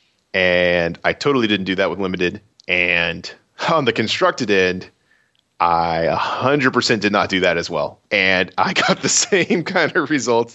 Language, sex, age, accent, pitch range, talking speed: English, male, 30-49, American, 90-110 Hz, 165 wpm